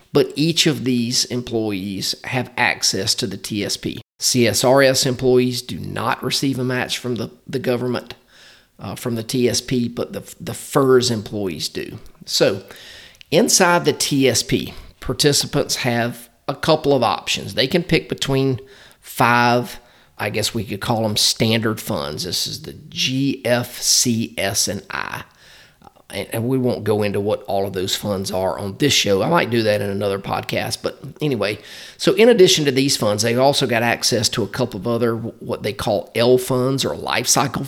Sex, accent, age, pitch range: male, American, 40-59, 110-130 Hz